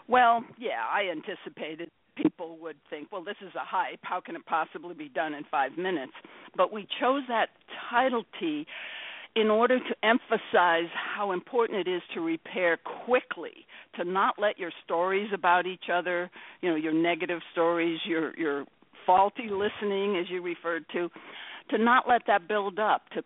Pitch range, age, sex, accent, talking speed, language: 175-250 Hz, 60-79, female, American, 170 wpm, English